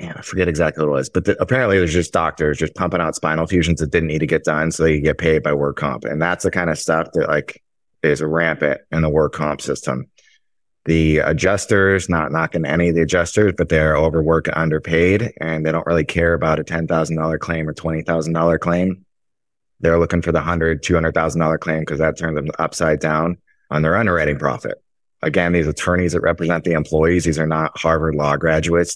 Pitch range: 75-85 Hz